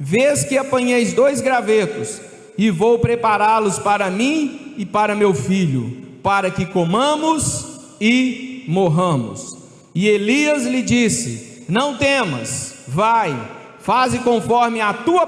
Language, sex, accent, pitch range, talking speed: Portuguese, male, Brazilian, 195-250 Hz, 120 wpm